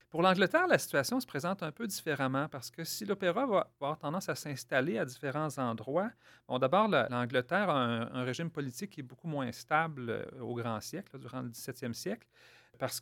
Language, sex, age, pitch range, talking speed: French, male, 40-59, 120-165 Hz, 205 wpm